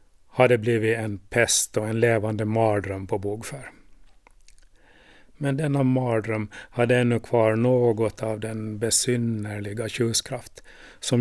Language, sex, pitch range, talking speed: Swedish, male, 110-125 Hz, 120 wpm